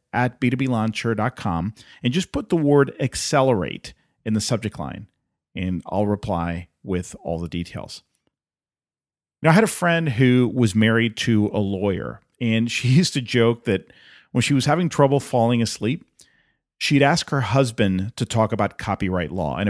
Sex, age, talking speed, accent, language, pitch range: male, 40-59, 160 wpm, American, English, 105-140 Hz